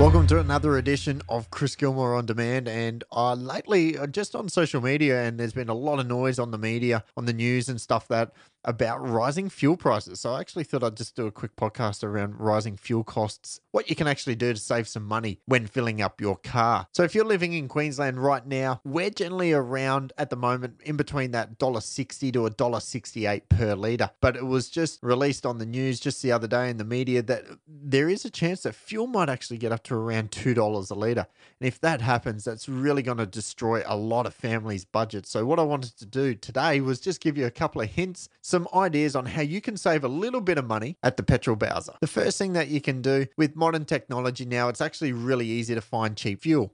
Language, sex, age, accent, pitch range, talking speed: English, male, 30-49, Australian, 115-145 Hz, 230 wpm